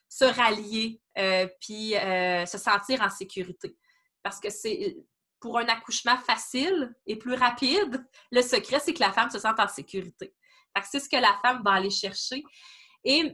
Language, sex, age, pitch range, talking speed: French, female, 20-39, 200-260 Hz, 175 wpm